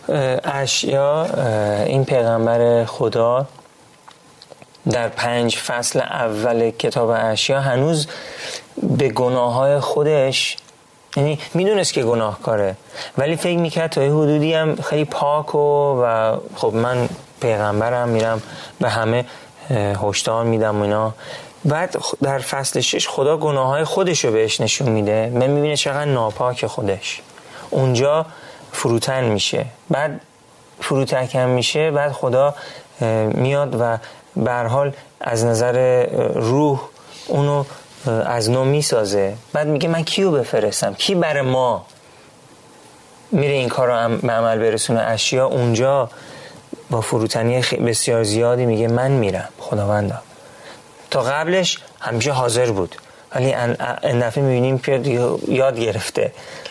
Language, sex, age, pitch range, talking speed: Persian, male, 30-49, 115-145 Hz, 115 wpm